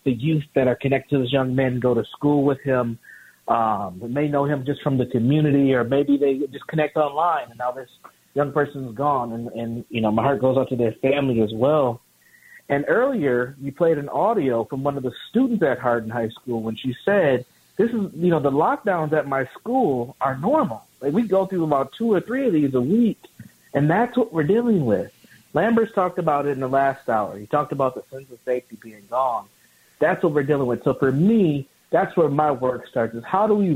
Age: 40-59